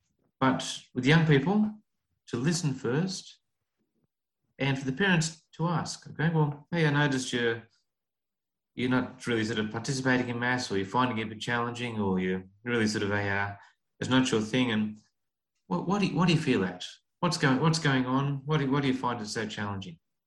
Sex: male